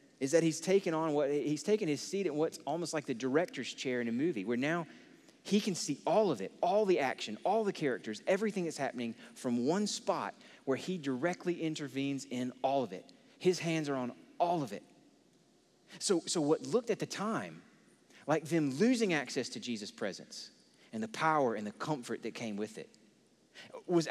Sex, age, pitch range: male, 30-49, 120-180 Hz